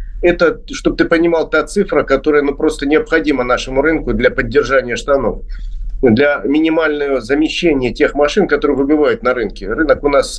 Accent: native